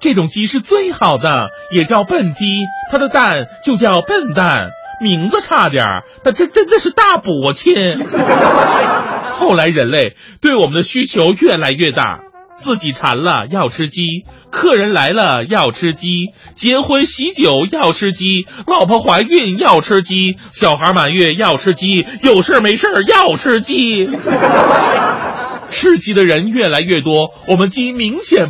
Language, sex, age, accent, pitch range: Chinese, male, 30-49, native, 180-260 Hz